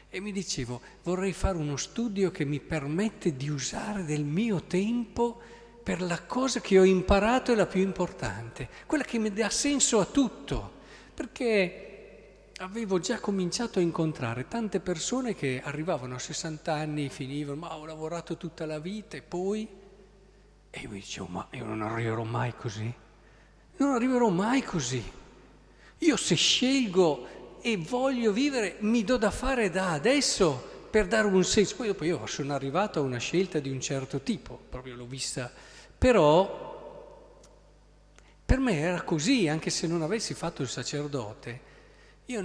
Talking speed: 155 wpm